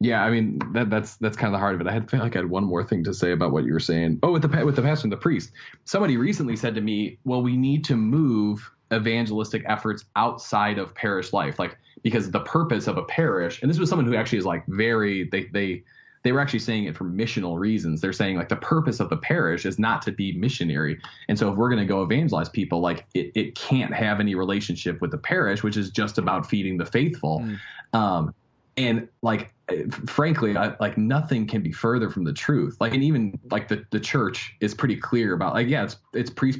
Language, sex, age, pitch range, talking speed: English, male, 20-39, 95-120 Hz, 240 wpm